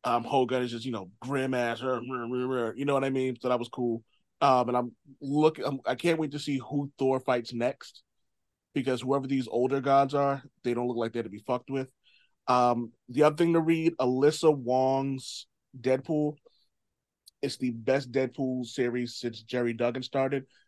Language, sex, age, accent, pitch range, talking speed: English, male, 30-49, American, 120-140 Hz, 195 wpm